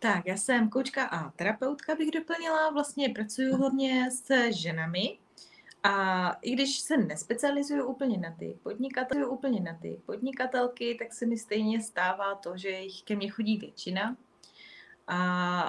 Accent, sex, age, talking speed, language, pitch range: native, female, 20-39, 145 wpm, Czech, 190-245 Hz